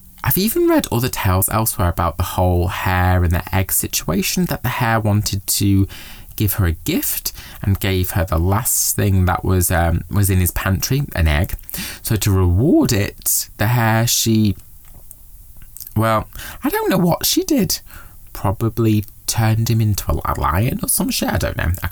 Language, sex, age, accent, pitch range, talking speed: English, male, 20-39, British, 90-120 Hz, 180 wpm